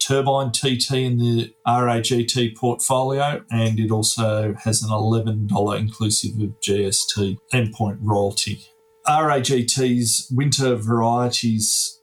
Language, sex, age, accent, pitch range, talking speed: English, male, 40-59, Australian, 110-125 Hz, 100 wpm